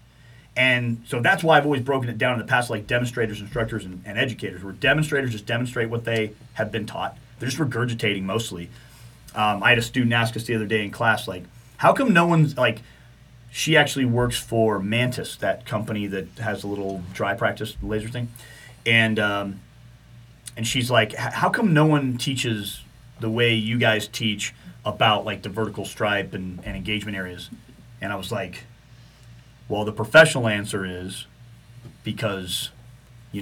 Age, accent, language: 30-49, American, English